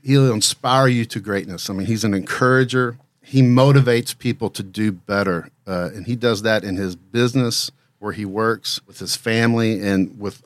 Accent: American